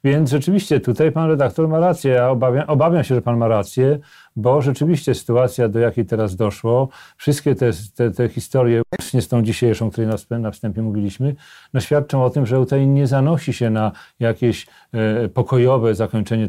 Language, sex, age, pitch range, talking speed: Polish, male, 40-59, 110-135 Hz, 180 wpm